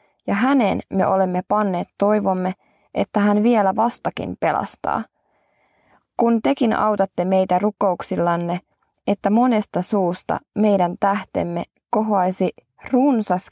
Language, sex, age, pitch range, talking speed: Finnish, female, 20-39, 180-210 Hz, 100 wpm